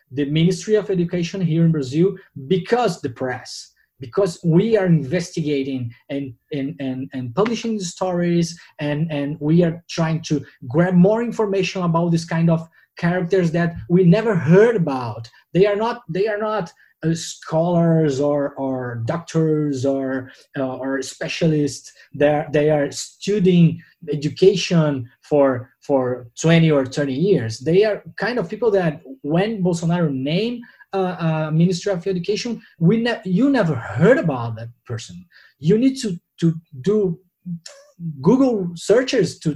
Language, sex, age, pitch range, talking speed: English, male, 20-39, 145-190 Hz, 145 wpm